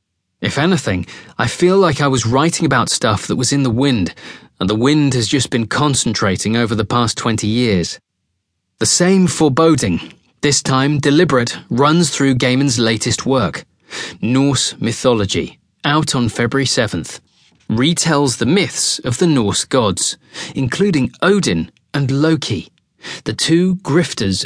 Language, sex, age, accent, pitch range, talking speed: English, male, 30-49, British, 110-150 Hz, 140 wpm